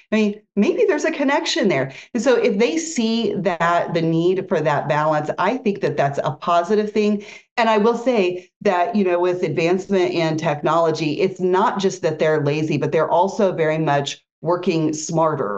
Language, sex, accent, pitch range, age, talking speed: English, female, American, 155-205 Hz, 40-59, 190 wpm